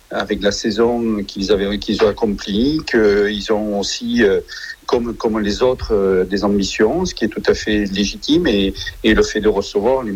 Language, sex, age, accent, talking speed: French, male, 50-69, French, 185 wpm